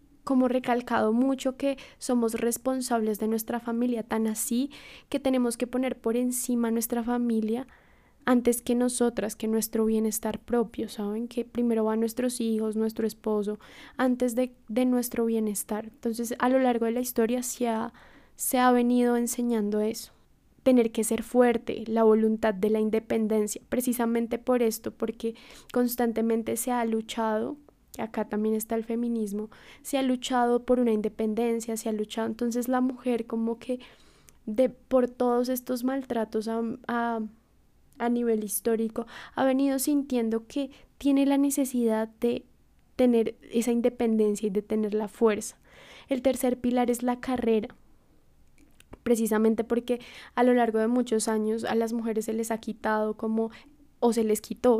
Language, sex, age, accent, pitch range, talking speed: Spanish, female, 10-29, Colombian, 220-250 Hz, 155 wpm